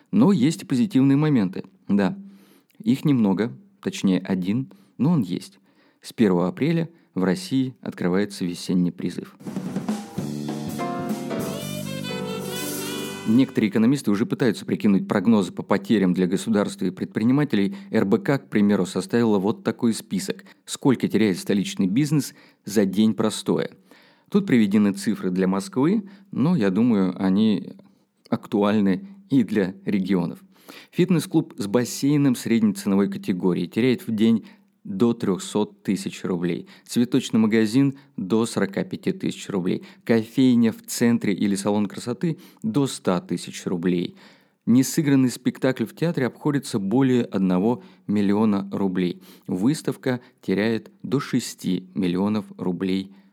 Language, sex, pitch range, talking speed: Russian, male, 95-135 Hz, 115 wpm